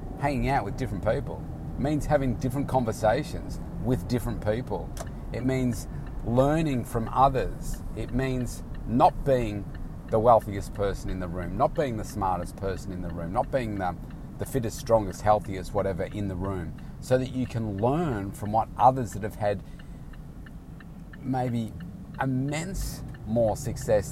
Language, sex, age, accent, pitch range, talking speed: English, male, 30-49, Australian, 95-120 Hz, 155 wpm